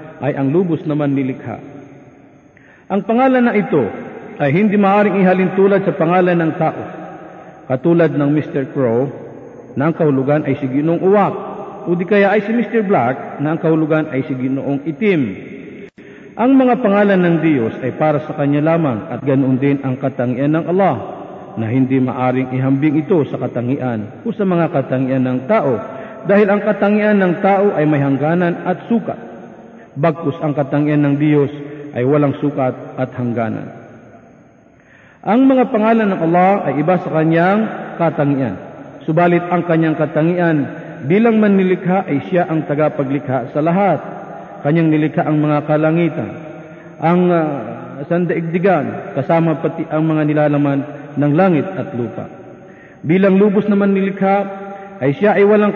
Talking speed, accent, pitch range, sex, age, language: 155 wpm, native, 145-190 Hz, male, 50-69, Filipino